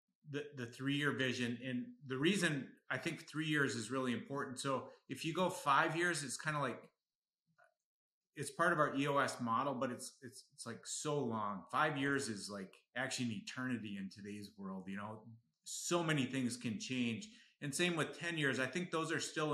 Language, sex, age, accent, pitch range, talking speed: English, male, 30-49, American, 120-155 Hz, 195 wpm